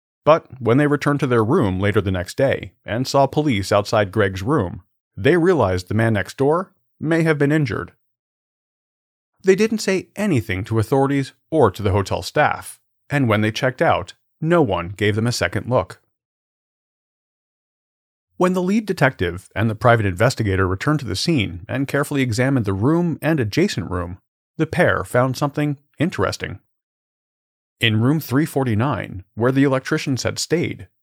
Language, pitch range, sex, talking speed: English, 105-155 Hz, male, 160 wpm